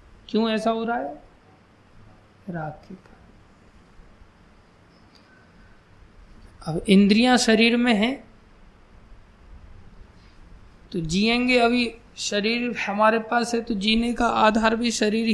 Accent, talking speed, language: native, 95 wpm, Hindi